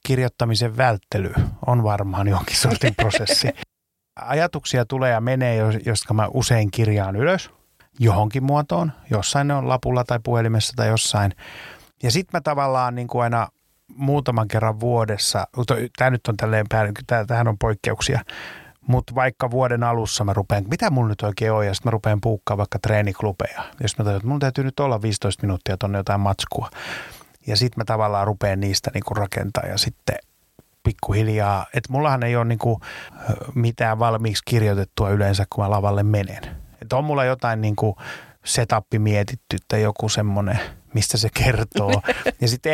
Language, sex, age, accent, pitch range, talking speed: Finnish, male, 30-49, native, 105-125 Hz, 160 wpm